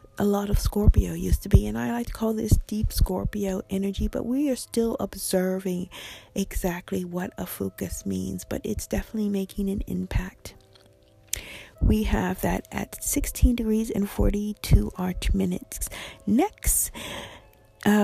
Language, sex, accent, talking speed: English, female, American, 145 wpm